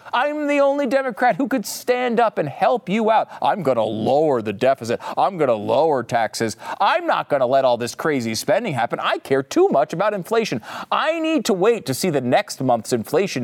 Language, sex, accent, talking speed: English, male, American, 220 wpm